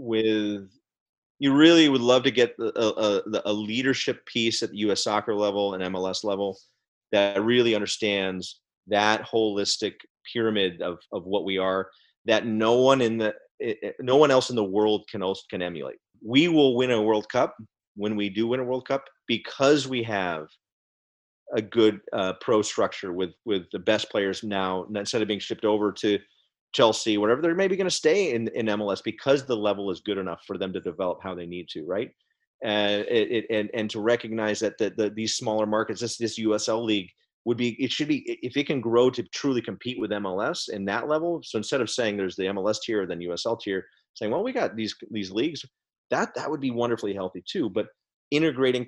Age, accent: 30-49, American